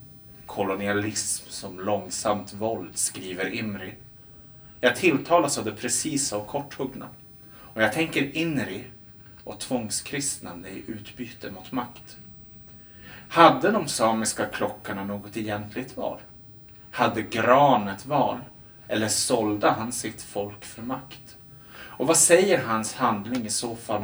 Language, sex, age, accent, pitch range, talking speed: Swedish, male, 30-49, Norwegian, 105-135 Hz, 120 wpm